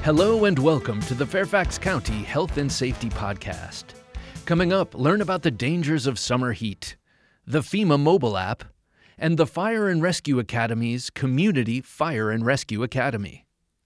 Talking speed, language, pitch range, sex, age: 150 wpm, English, 115-160 Hz, male, 40-59